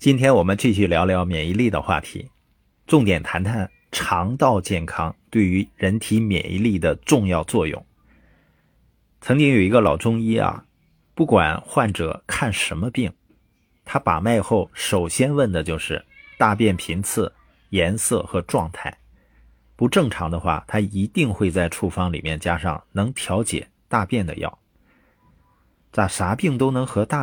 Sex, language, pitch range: male, Chinese, 90-125 Hz